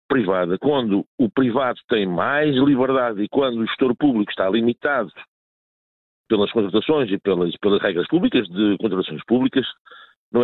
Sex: male